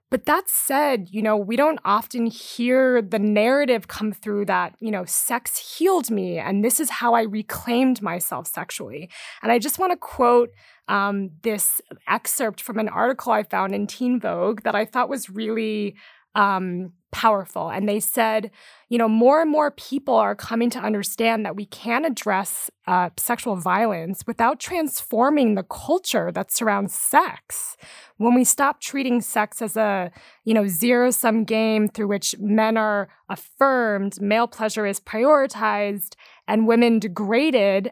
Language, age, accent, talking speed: English, 20-39, American, 160 wpm